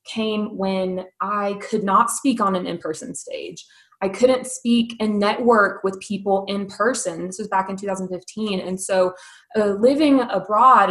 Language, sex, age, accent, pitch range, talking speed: English, female, 20-39, American, 190-235 Hz, 160 wpm